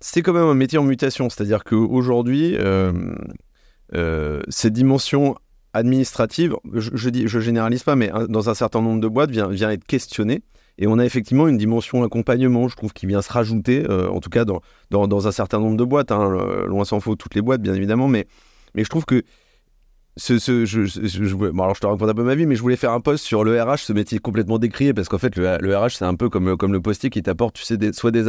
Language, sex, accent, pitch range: French, male, French, 105-135 Hz